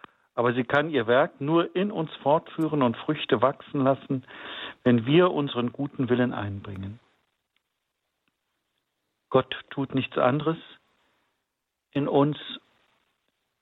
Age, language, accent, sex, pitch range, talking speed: 60-79, German, German, male, 120-150 Hz, 110 wpm